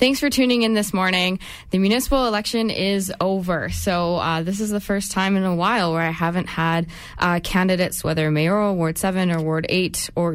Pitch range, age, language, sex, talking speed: 165-200 Hz, 20-39, English, female, 205 wpm